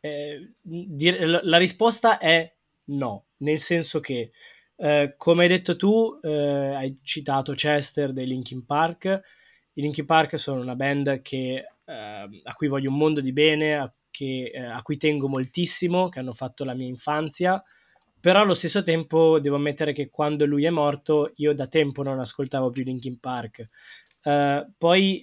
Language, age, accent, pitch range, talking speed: Italian, 20-39, native, 140-170 Hz, 170 wpm